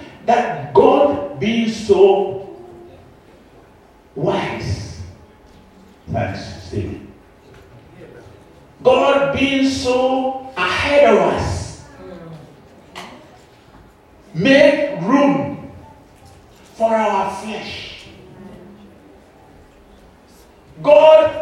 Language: English